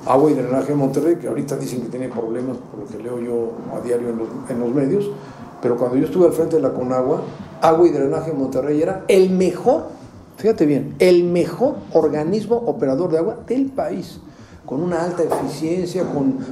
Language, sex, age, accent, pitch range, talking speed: Spanish, male, 50-69, Mexican, 135-170 Hz, 200 wpm